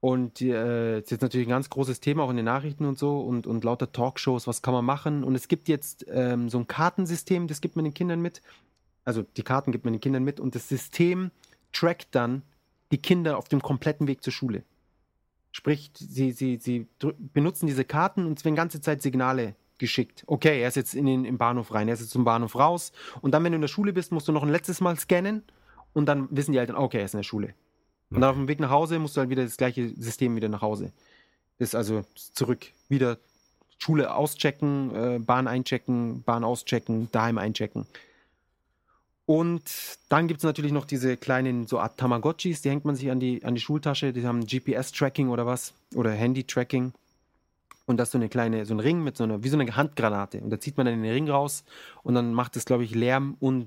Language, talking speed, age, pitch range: German, 220 wpm, 30-49, 120-145 Hz